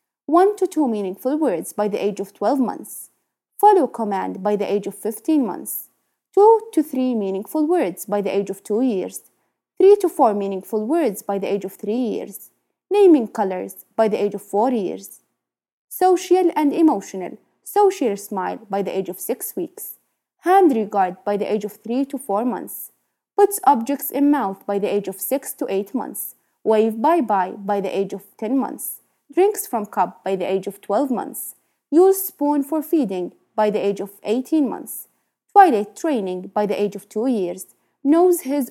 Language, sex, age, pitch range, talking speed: English, female, 20-39, 200-300 Hz, 185 wpm